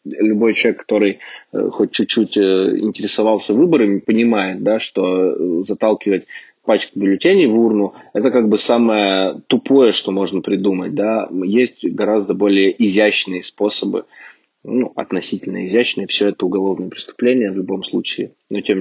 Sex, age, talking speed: male, 20-39, 130 wpm